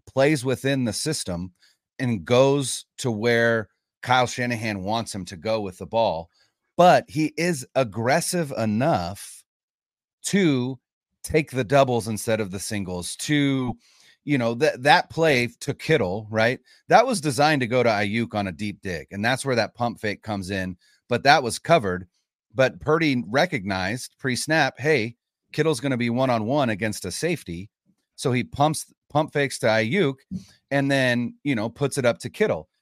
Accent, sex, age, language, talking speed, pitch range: American, male, 30-49, English, 165 wpm, 110-140 Hz